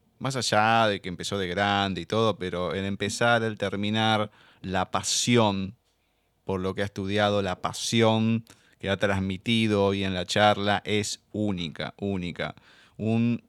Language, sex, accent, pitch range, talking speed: Spanish, male, Argentinian, 95-110 Hz, 150 wpm